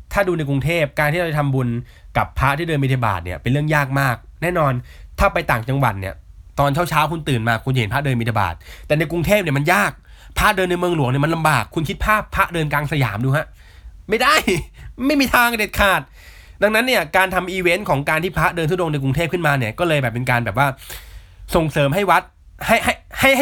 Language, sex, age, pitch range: Thai, male, 20-39, 115-155 Hz